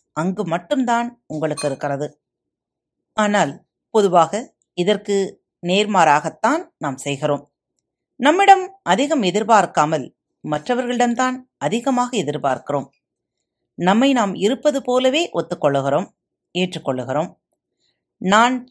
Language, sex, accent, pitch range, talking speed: Tamil, female, native, 160-255 Hz, 75 wpm